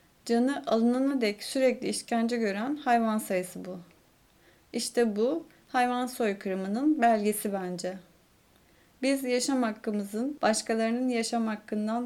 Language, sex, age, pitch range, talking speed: Turkish, female, 30-49, 205-245 Hz, 105 wpm